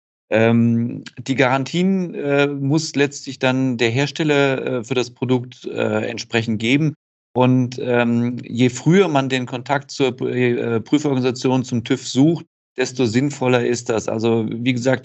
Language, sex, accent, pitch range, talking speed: German, male, German, 120-140 Hz, 120 wpm